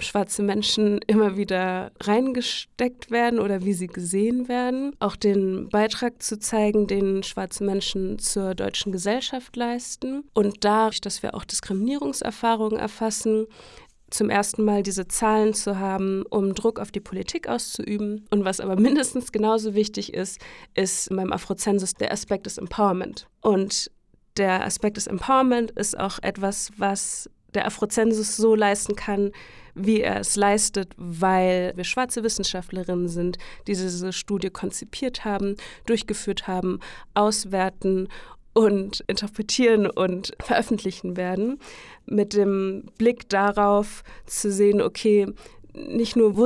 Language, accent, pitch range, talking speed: German, German, 190-225 Hz, 135 wpm